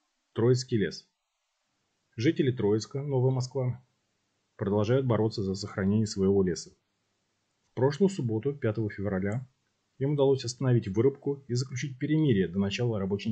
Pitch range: 100-130 Hz